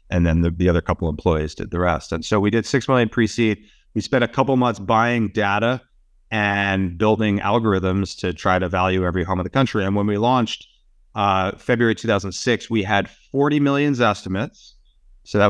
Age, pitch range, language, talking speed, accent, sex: 30-49, 95-120 Hz, English, 200 wpm, American, male